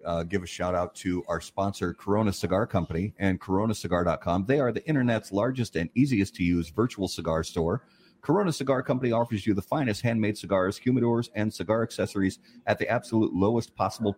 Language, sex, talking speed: English, male, 180 wpm